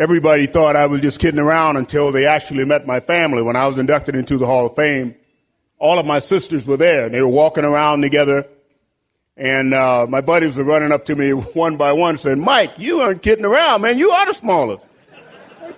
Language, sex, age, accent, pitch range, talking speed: English, male, 40-59, American, 135-155 Hz, 220 wpm